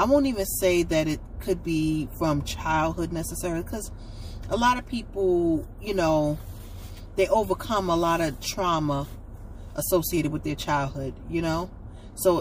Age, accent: 30-49, American